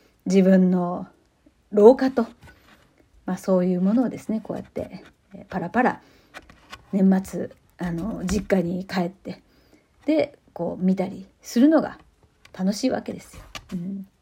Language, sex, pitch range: Japanese, female, 200-310 Hz